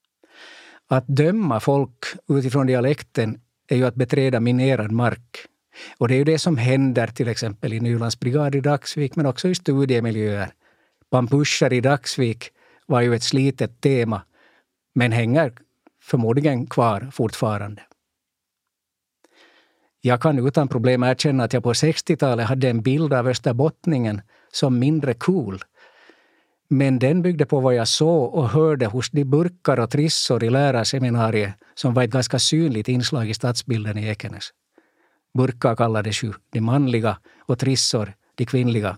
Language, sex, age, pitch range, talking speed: Swedish, male, 60-79, 115-140 Hz, 145 wpm